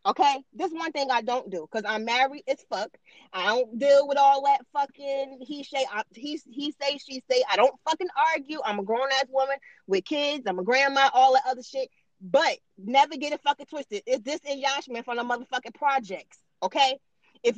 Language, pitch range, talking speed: English, 265-320 Hz, 210 wpm